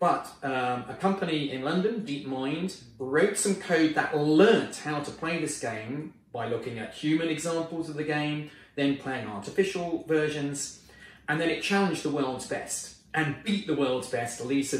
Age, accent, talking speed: 30-49, British, 170 wpm